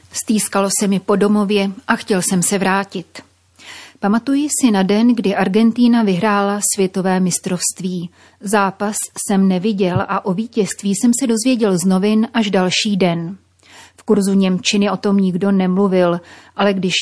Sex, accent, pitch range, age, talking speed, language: female, native, 180-215 Hz, 30-49, 150 wpm, Czech